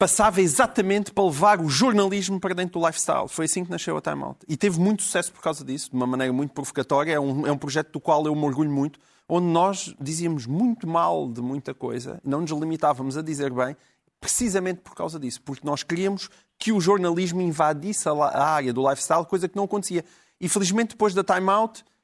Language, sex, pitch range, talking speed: Portuguese, male, 150-205 Hz, 220 wpm